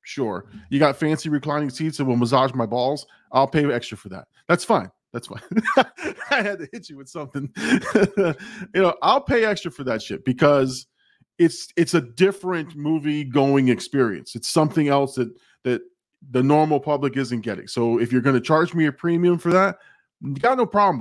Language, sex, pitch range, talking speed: English, male, 130-175 Hz, 195 wpm